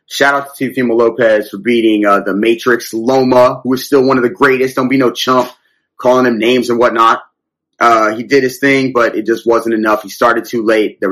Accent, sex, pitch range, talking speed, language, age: American, male, 110-130 Hz, 225 wpm, English, 30-49